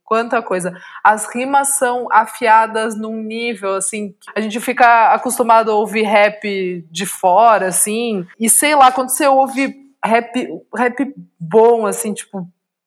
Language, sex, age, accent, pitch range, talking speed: Portuguese, female, 20-39, Brazilian, 200-240 Hz, 140 wpm